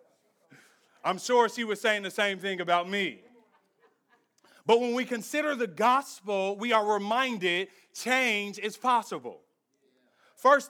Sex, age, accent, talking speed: male, 40-59, American, 130 wpm